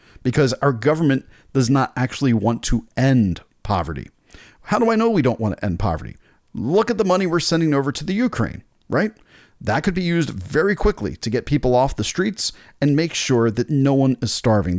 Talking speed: 205 wpm